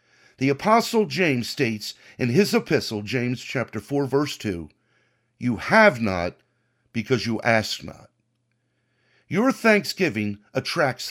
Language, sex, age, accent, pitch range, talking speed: English, male, 50-69, American, 125-210 Hz, 120 wpm